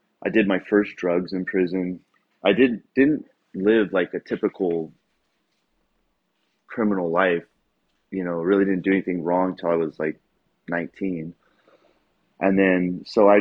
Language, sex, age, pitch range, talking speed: English, male, 30-49, 85-95 Hz, 145 wpm